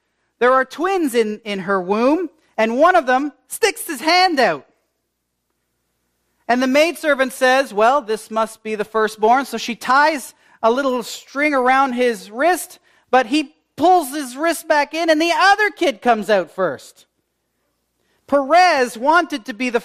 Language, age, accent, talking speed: English, 40-59, American, 160 wpm